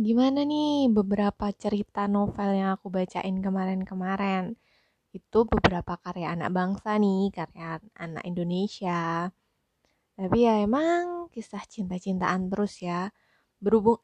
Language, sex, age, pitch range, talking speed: Indonesian, female, 20-39, 185-220 Hz, 110 wpm